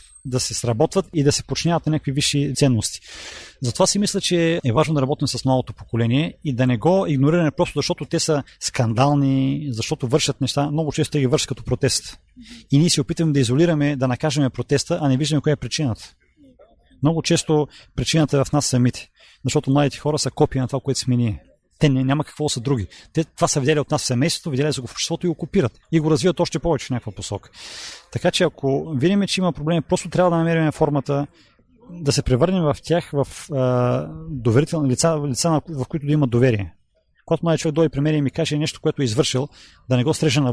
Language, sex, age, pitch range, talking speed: Bulgarian, male, 30-49, 130-160 Hz, 215 wpm